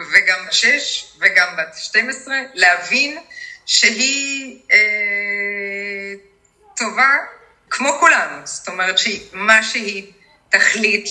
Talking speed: 95 wpm